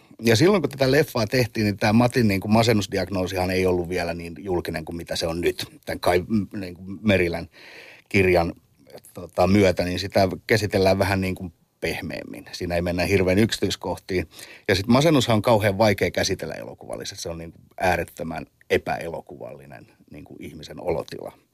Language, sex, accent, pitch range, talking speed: Finnish, male, native, 90-120 Hz, 165 wpm